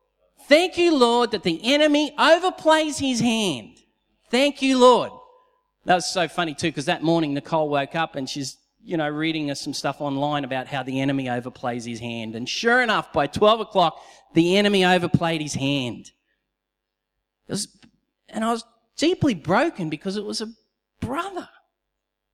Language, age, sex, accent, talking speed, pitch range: English, 40-59, male, Australian, 165 wpm, 160-240 Hz